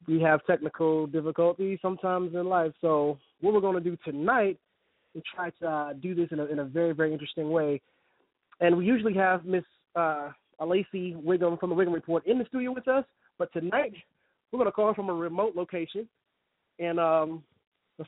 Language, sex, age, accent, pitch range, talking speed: English, male, 30-49, American, 155-190 Hz, 195 wpm